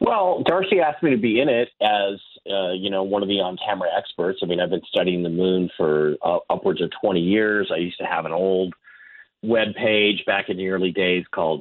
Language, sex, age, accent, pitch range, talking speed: English, male, 40-59, American, 95-130 Hz, 225 wpm